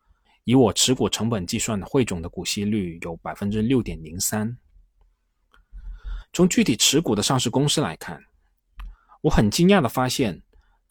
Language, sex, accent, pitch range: Chinese, male, native, 90-135 Hz